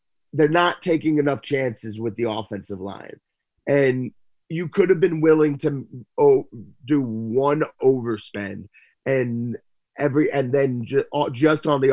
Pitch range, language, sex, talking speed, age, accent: 120-165 Hz, English, male, 130 wpm, 30-49, American